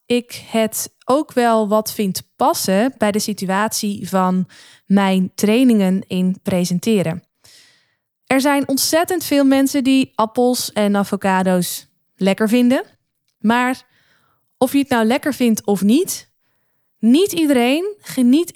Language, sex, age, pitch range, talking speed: Dutch, female, 20-39, 190-250 Hz, 125 wpm